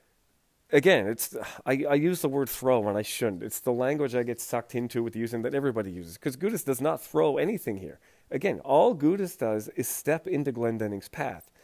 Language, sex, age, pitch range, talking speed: English, male, 40-59, 115-150 Hz, 205 wpm